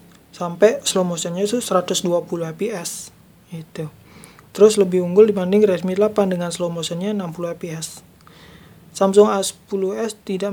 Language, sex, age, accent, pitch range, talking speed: Indonesian, male, 20-39, native, 165-200 Hz, 120 wpm